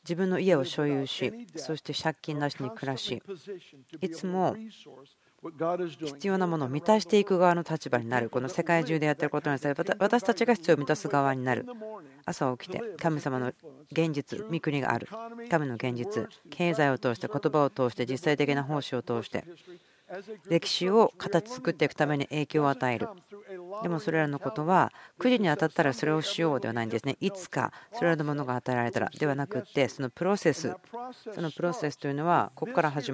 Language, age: Japanese, 40-59